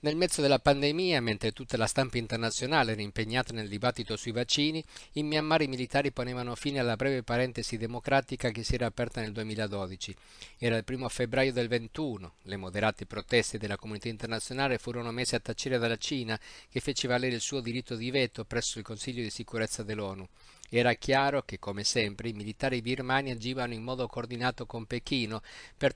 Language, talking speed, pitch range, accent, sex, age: Italian, 180 wpm, 110-130 Hz, native, male, 50-69